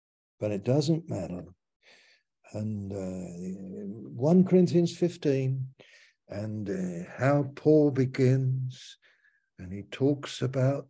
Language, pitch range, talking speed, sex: English, 120-160 Hz, 100 wpm, male